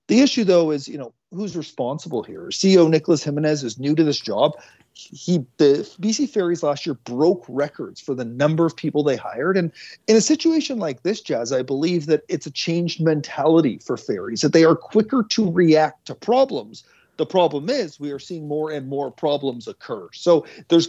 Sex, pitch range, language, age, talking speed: male, 140-190 Hz, English, 40-59, 200 wpm